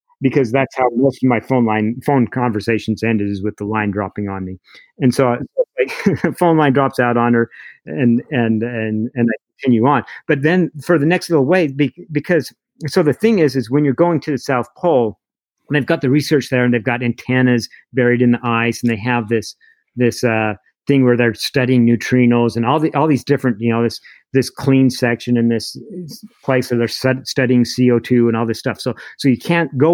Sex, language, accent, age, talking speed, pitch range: male, English, American, 50-69, 215 wpm, 115-145 Hz